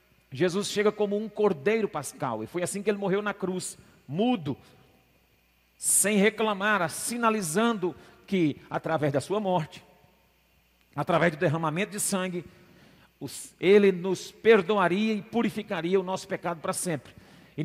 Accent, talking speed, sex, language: Brazilian, 135 wpm, male, Portuguese